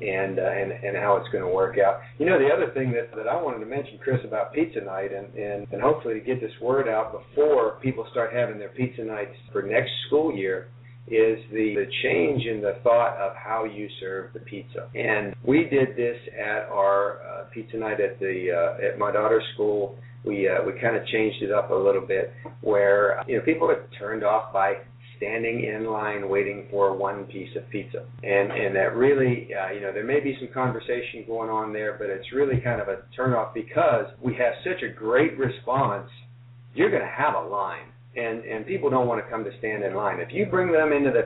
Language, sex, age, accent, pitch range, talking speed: English, male, 50-69, American, 105-130 Hz, 225 wpm